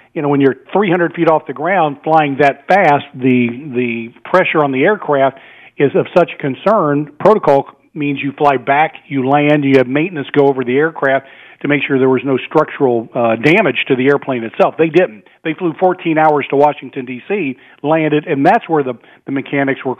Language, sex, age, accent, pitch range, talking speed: English, male, 40-59, American, 135-160 Hz, 200 wpm